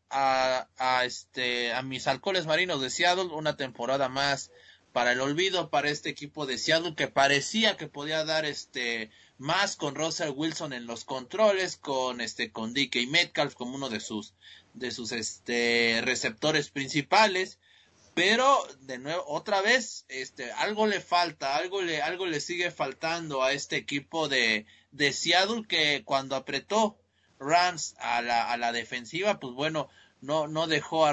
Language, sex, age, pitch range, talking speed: Spanish, male, 30-49, 130-170 Hz, 160 wpm